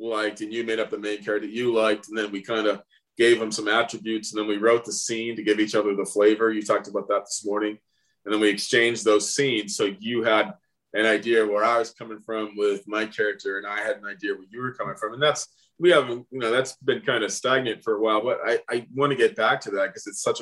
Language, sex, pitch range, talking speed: English, male, 105-135 Hz, 275 wpm